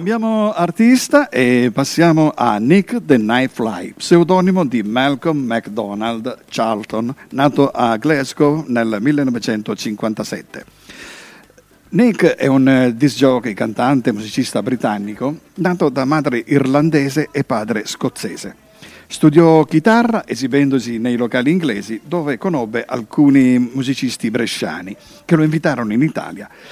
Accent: native